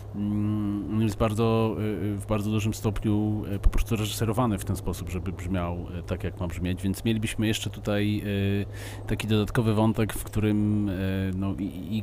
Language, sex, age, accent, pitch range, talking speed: Polish, male, 40-59, native, 95-105 Hz, 135 wpm